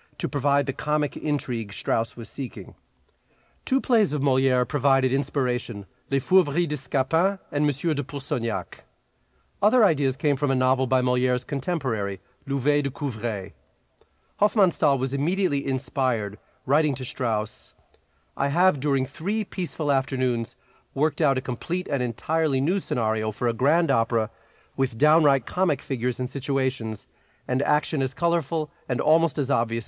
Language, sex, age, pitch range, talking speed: English, male, 40-59, 120-150 Hz, 145 wpm